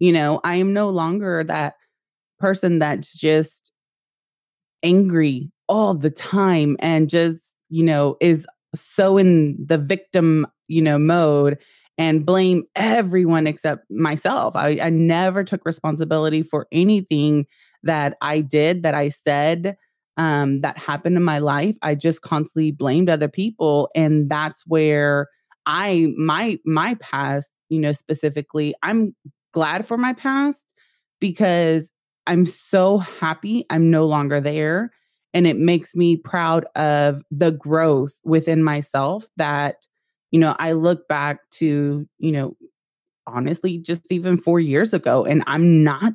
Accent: American